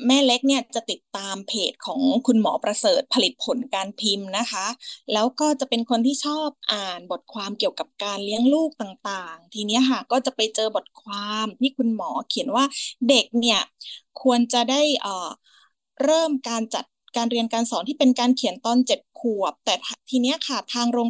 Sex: female